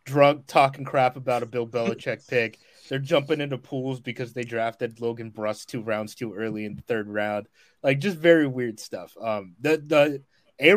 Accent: American